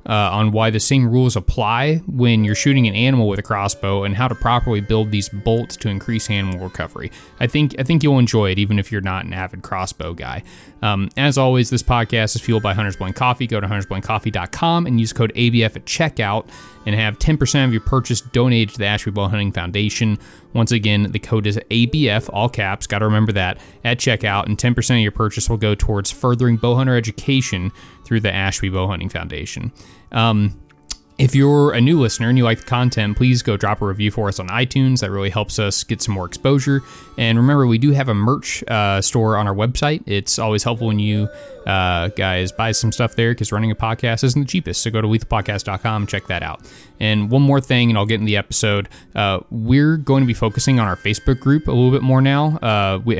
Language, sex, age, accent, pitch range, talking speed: English, male, 30-49, American, 100-120 Hz, 220 wpm